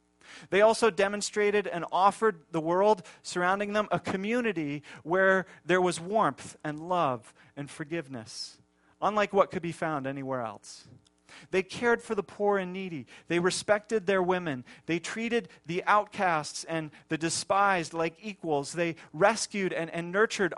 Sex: male